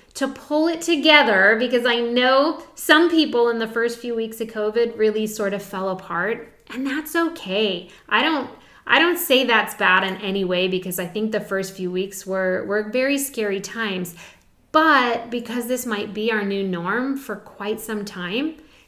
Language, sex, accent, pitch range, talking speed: English, female, American, 185-240 Hz, 185 wpm